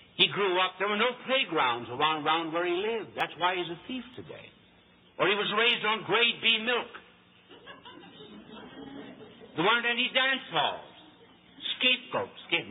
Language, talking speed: English, 150 wpm